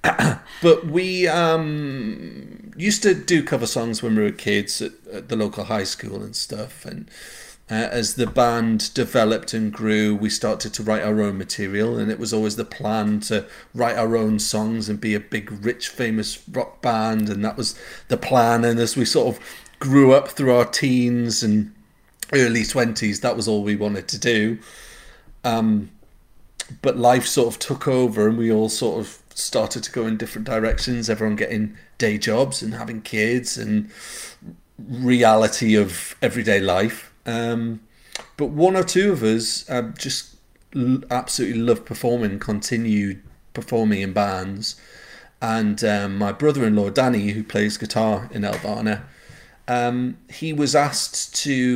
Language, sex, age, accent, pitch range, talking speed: English, male, 40-59, British, 105-125 Hz, 160 wpm